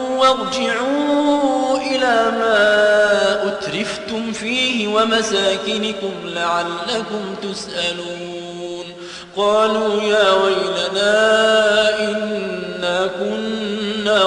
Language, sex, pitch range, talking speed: Arabic, male, 190-220 Hz, 55 wpm